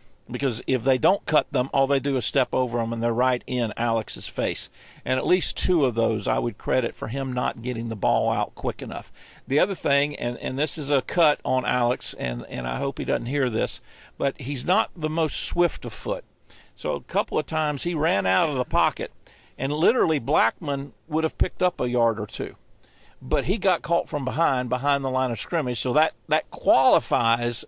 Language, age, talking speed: English, 50-69, 220 wpm